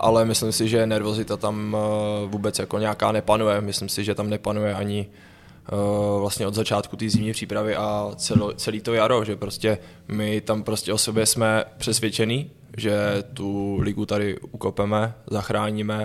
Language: Czech